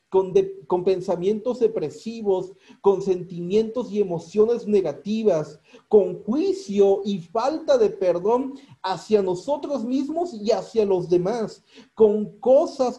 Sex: male